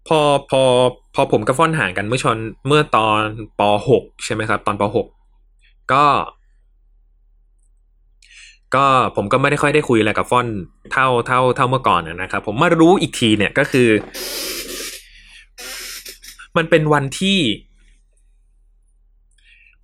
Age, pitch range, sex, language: 20-39, 100-160 Hz, male, Thai